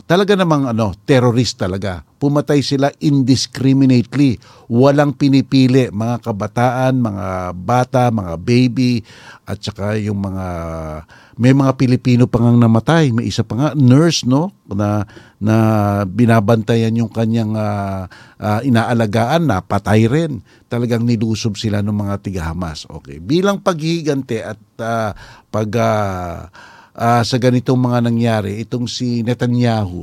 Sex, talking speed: male, 130 wpm